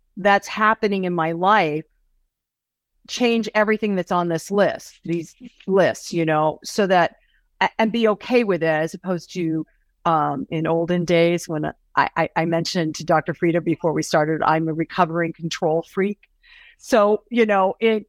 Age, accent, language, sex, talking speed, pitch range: 50-69, American, English, female, 165 wpm, 170-215 Hz